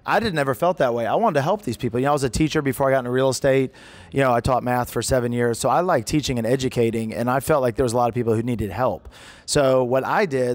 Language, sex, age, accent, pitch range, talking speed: English, male, 30-49, American, 120-145 Hz, 305 wpm